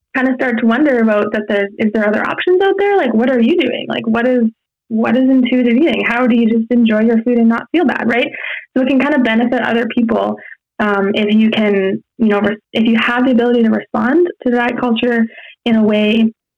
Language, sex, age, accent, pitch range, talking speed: English, female, 20-39, American, 210-245 Hz, 245 wpm